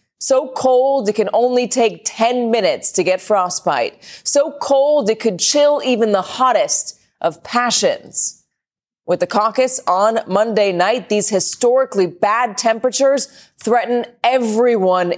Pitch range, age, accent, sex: 195-250 Hz, 30-49, American, female